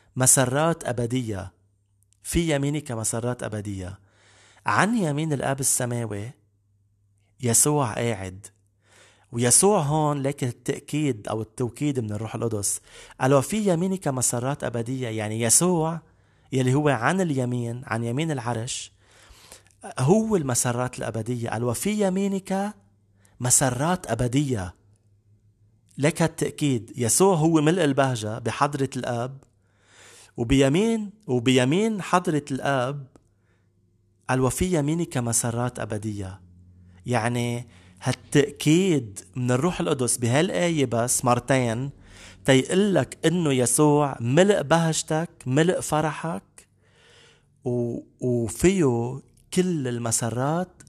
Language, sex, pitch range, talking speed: English, male, 110-150 Hz, 90 wpm